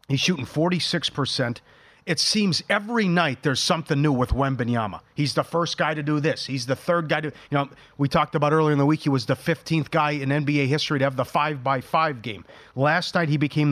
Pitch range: 135-170 Hz